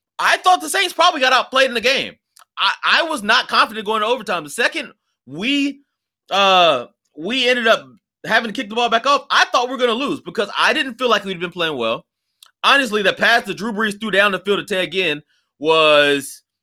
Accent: American